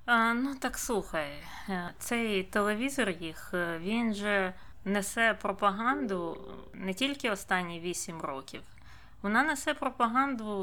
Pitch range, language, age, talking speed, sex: 185-235 Hz, Ukrainian, 20-39, 100 wpm, female